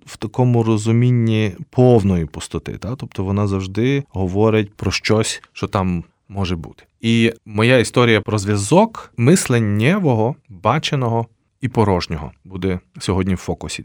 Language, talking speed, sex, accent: Ukrainian, 125 wpm, male, native